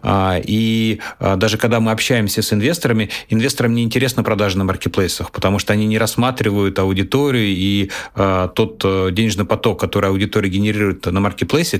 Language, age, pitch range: Russian, 30-49, 100-120 Hz